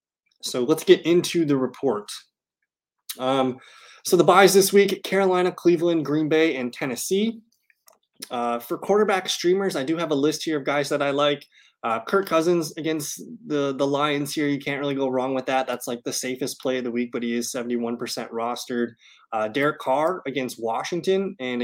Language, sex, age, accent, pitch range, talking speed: English, male, 20-39, American, 120-165 Hz, 185 wpm